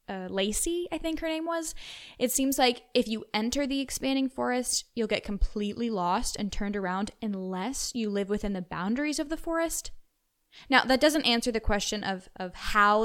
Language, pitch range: English, 205-265 Hz